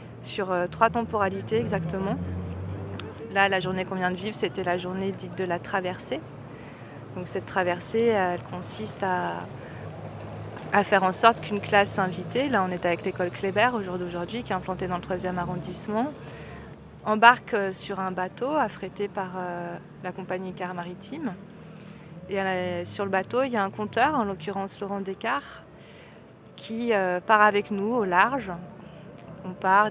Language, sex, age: French, female, 30-49